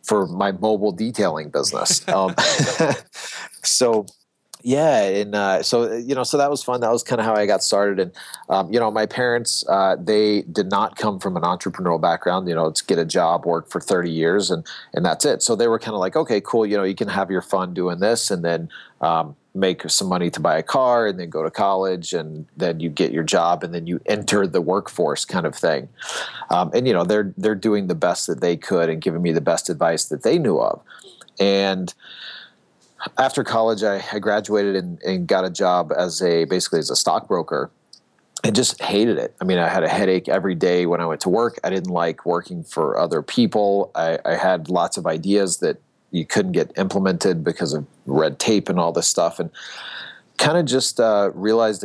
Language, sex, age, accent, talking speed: English, male, 30-49, American, 220 wpm